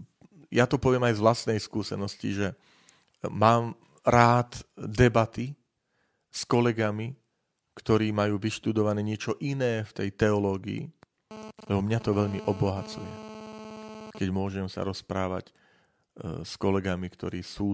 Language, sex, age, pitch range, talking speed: Slovak, male, 40-59, 100-125 Hz, 115 wpm